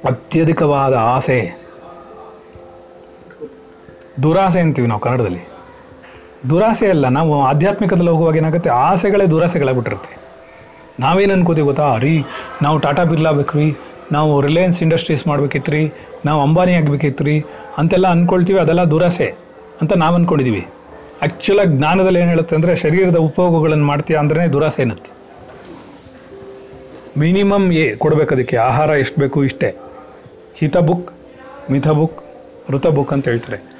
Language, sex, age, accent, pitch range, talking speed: Kannada, male, 40-59, native, 130-165 Hz, 110 wpm